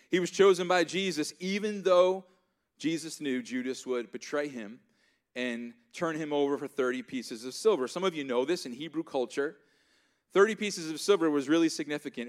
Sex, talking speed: male, 180 wpm